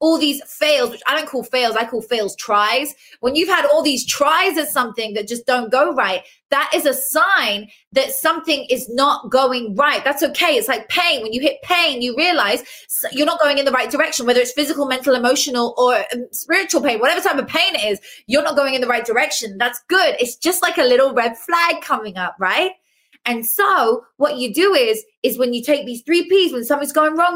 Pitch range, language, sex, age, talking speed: 210-290 Hz, English, female, 20-39, 225 wpm